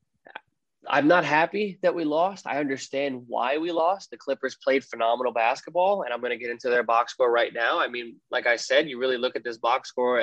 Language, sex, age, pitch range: English, male, 20-39, 130-165 Hz